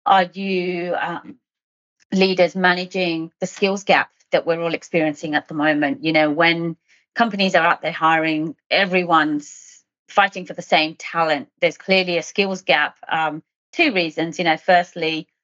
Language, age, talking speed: English, 30-49, 155 wpm